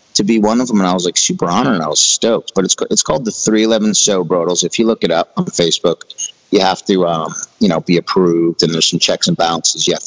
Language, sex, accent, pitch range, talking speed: English, male, American, 90-120 Hz, 275 wpm